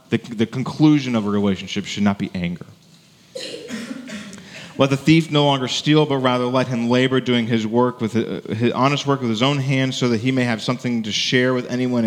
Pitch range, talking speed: 110-140 Hz, 215 wpm